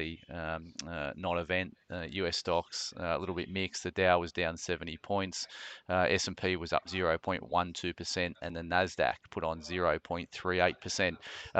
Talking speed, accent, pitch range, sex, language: 150 wpm, Australian, 90-105 Hz, male, English